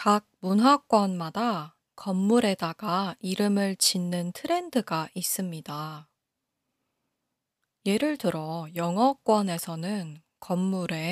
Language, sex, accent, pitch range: Korean, female, native, 165-230 Hz